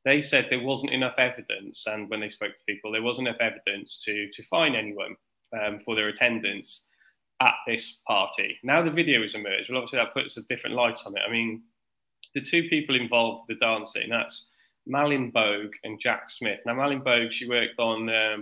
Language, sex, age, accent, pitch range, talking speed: English, male, 10-29, British, 110-140 Hz, 205 wpm